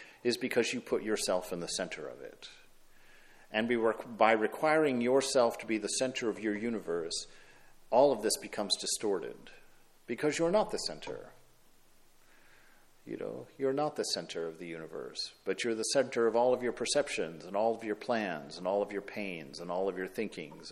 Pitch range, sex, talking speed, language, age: 110-155 Hz, male, 185 wpm, English, 50-69